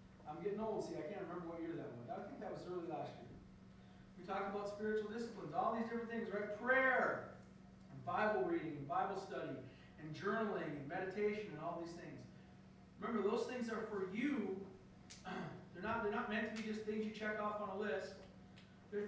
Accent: American